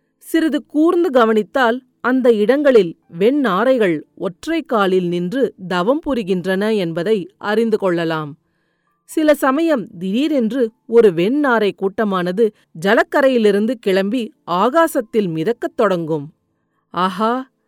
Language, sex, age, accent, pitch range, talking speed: Tamil, female, 40-59, native, 185-255 Hz, 90 wpm